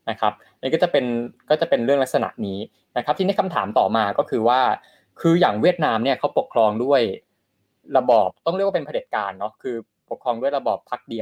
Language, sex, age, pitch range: Thai, male, 20-39, 110-155 Hz